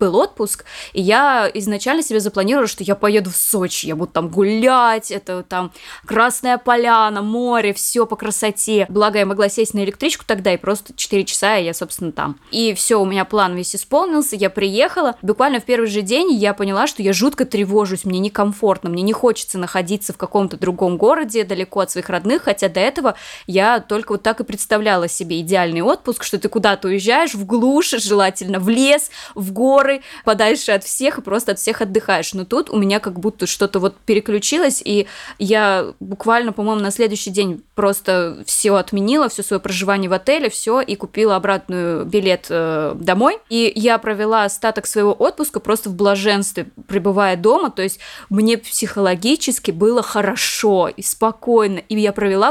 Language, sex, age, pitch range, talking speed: Russian, female, 20-39, 195-230 Hz, 180 wpm